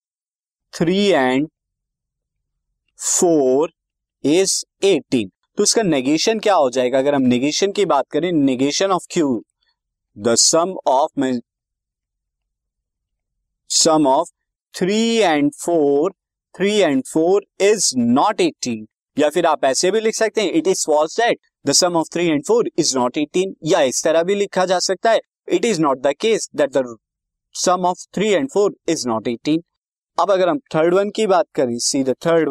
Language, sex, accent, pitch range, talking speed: Hindi, male, native, 140-195 Hz, 150 wpm